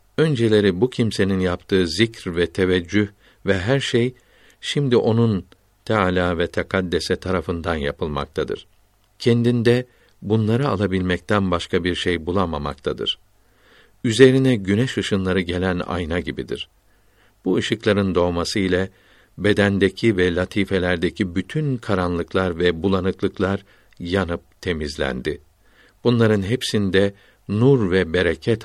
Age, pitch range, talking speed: 60-79, 90-110 Hz, 100 wpm